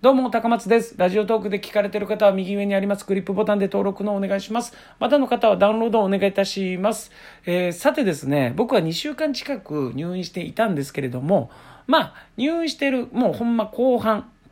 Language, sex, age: Japanese, male, 40-59